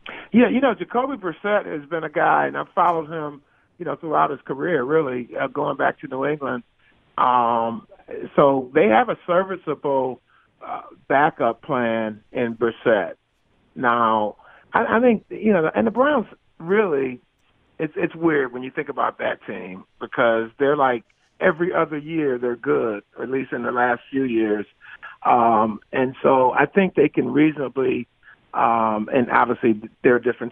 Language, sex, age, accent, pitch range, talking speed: English, male, 40-59, American, 110-150 Hz, 165 wpm